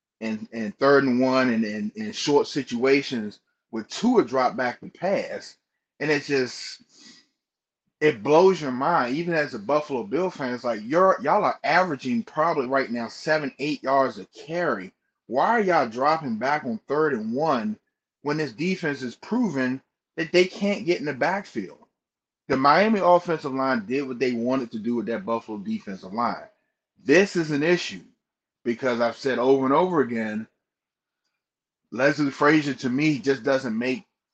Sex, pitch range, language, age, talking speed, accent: male, 120-150 Hz, English, 30-49, 170 wpm, American